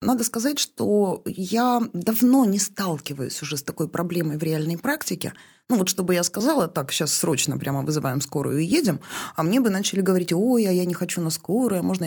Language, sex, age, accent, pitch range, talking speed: Russian, female, 20-39, native, 170-220 Hz, 200 wpm